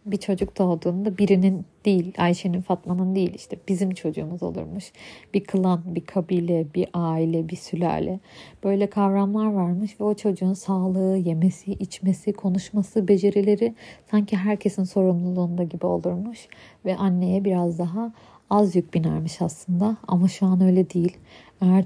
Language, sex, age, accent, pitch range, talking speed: Turkish, female, 40-59, native, 180-200 Hz, 135 wpm